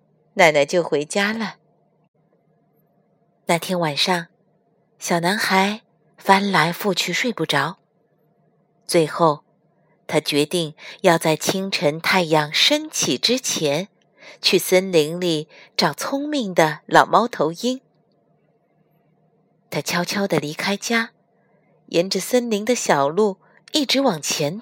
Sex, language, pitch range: female, Chinese, 160-220 Hz